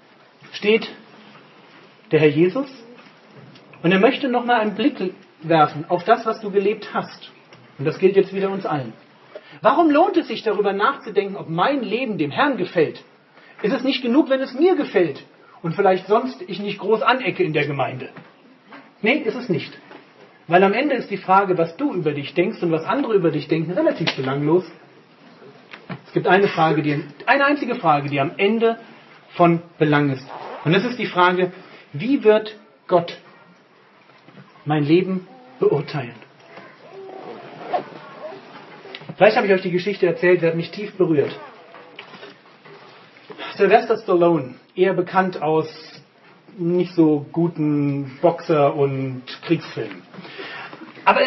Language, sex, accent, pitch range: German, male, German, 165-220 Hz